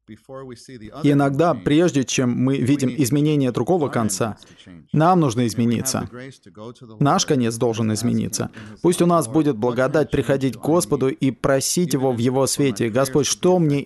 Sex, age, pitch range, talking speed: male, 20-39, 115-145 Hz, 145 wpm